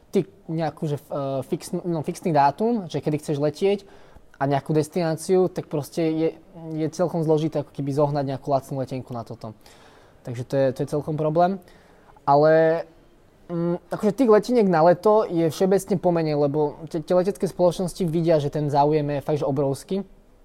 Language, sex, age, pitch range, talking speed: Slovak, male, 20-39, 135-155 Hz, 155 wpm